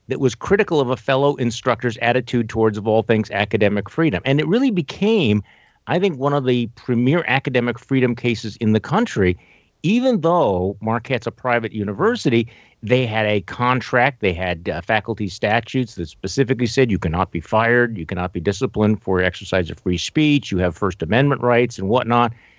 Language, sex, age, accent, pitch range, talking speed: English, male, 50-69, American, 100-130 Hz, 180 wpm